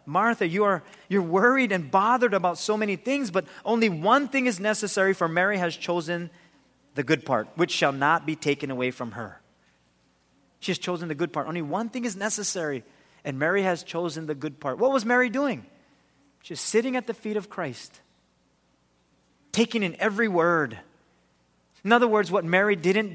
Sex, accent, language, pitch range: male, American, English, 140-200 Hz